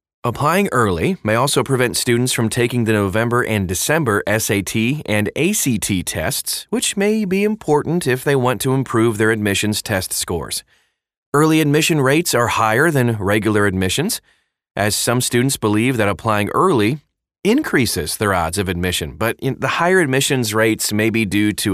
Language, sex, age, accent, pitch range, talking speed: English, male, 30-49, American, 100-130 Hz, 165 wpm